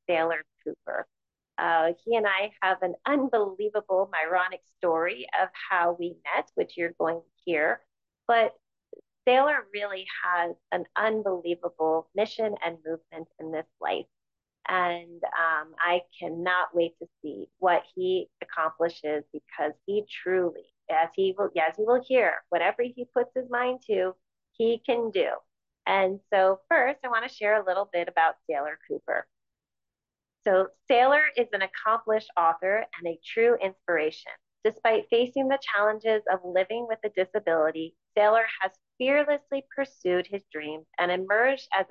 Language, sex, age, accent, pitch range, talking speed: English, female, 30-49, American, 170-230 Hz, 145 wpm